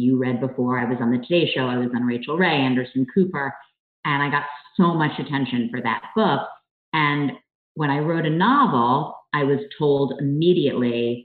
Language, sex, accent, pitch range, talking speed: English, female, American, 125-150 Hz, 185 wpm